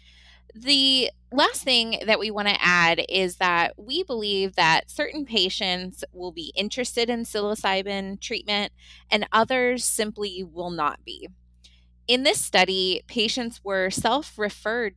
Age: 20-39